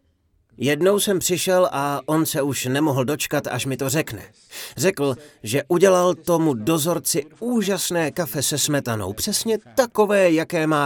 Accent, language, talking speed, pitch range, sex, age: native, Czech, 145 wpm, 115-180 Hz, male, 30-49